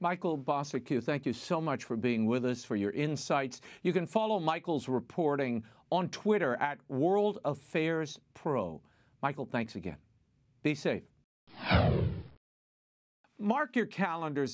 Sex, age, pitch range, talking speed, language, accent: male, 50-69, 130-190 Hz, 130 wpm, English, American